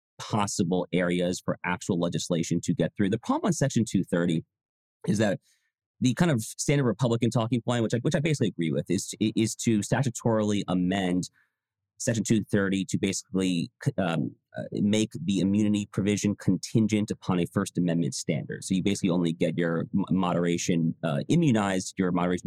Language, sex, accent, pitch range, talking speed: English, male, American, 90-120 Hz, 160 wpm